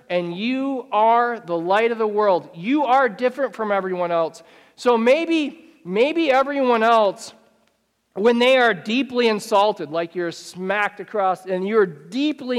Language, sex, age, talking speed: English, male, 40-59, 150 wpm